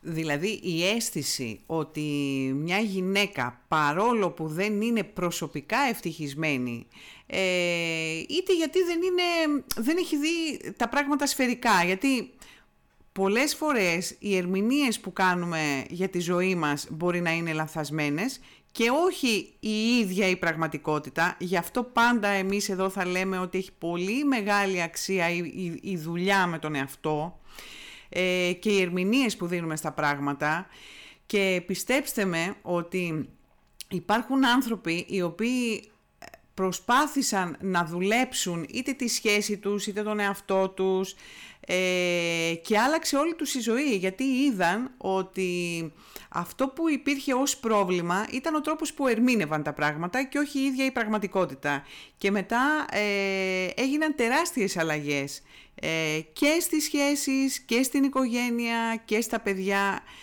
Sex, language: female, Greek